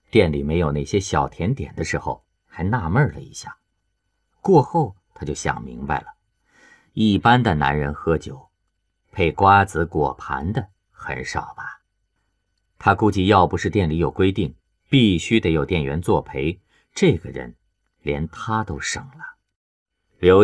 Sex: male